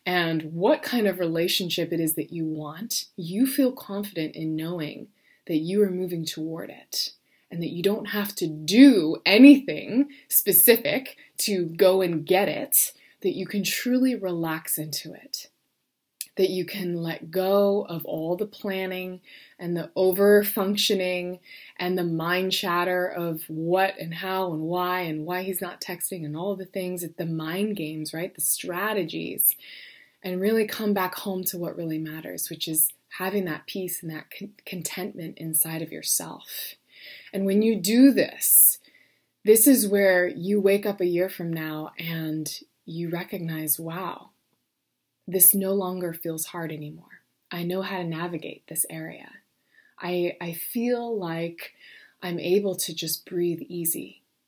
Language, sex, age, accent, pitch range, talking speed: English, female, 20-39, American, 165-200 Hz, 155 wpm